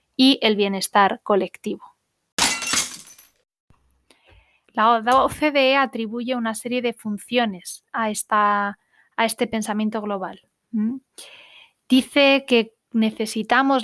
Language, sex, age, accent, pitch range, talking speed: Spanish, female, 20-39, Spanish, 215-245 Hz, 80 wpm